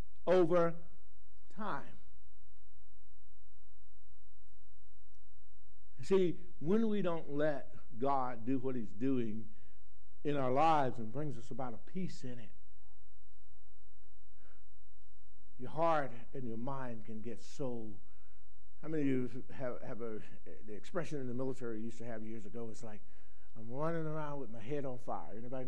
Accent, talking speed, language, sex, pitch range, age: American, 140 wpm, English, male, 95-140 Hz, 60-79